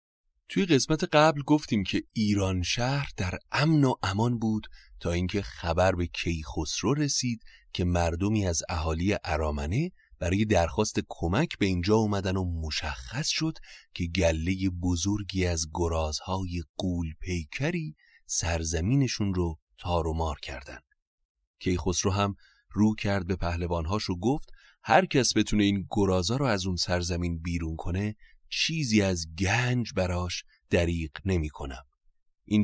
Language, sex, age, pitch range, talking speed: Persian, male, 30-49, 85-105 Hz, 130 wpm